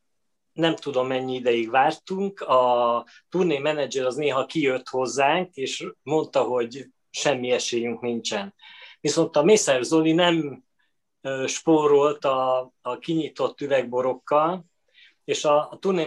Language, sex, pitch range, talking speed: Hungarian, male, 135-170 Hz, 120 wpm